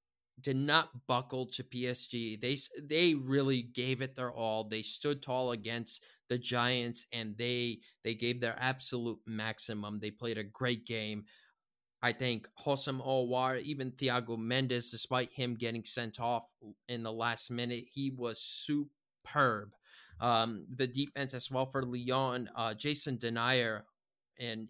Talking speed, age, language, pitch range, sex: 145 wpm, 20-39, English, 110-130 Hz, male